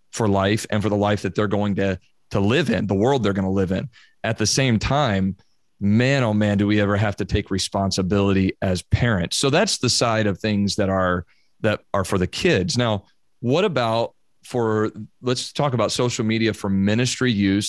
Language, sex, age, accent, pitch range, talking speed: English, male, 40-59, American, 100-120 Hz, 205 wpm